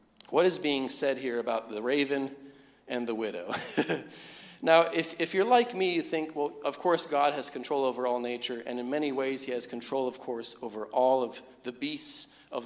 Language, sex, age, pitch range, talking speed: English, male, 40-59, 125-155 Hz, 205 wpm